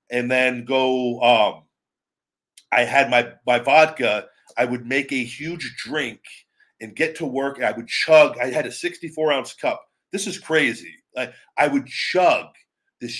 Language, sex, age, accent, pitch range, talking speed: English, male, 40-59, American, 120-145 Hz, 160 wpm